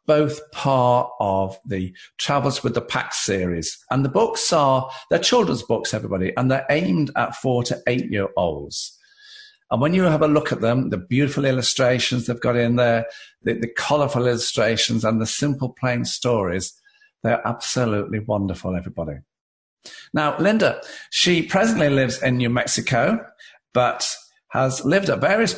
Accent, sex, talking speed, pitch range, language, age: British, male, 150 wpm, 105-145 Hz, English, 50-69